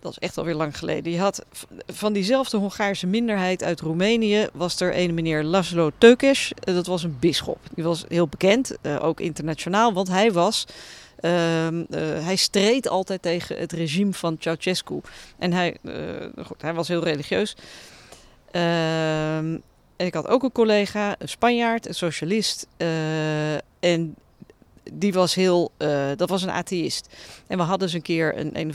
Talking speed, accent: 165 wpm, Dutch